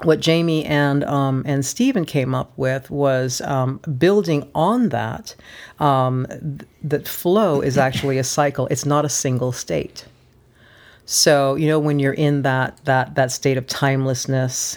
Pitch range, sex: 130-145 Hz, female